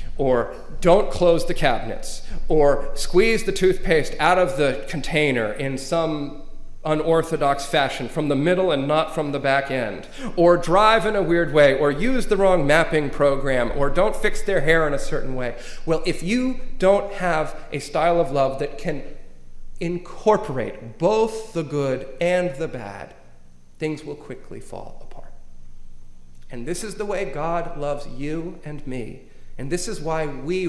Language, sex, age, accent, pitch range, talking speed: English, male, 40-59, American, 125-175 Hz, 165 wpm